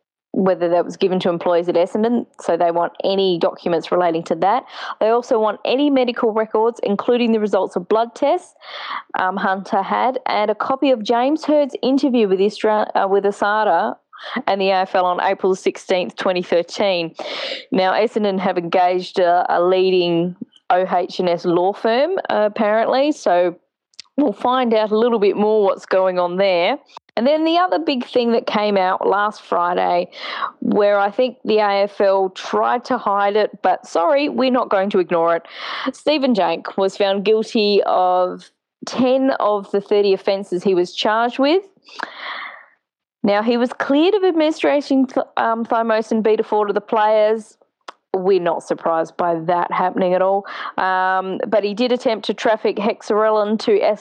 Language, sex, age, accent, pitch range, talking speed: English, female, 20-39, Australian, 190-245 Hz, 165 wpm